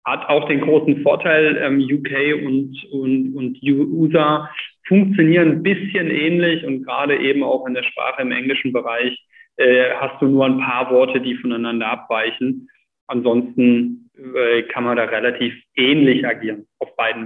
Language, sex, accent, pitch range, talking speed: German, male, German, 125-175 Hz, 155 wpm